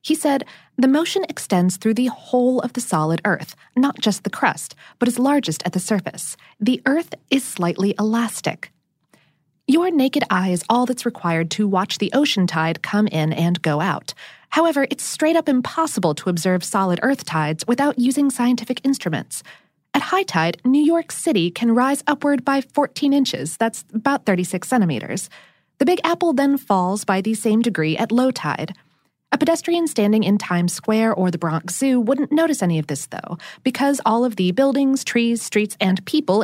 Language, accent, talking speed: English, American, 185 wpm